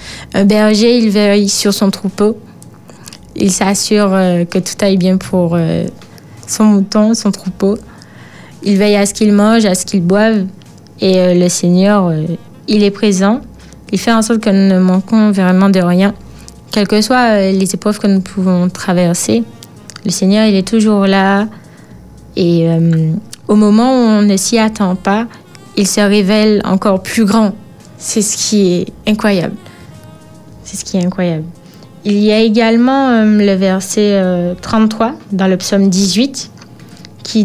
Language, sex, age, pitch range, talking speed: French, female, 20-39, 185-215 Hz, 170 wpm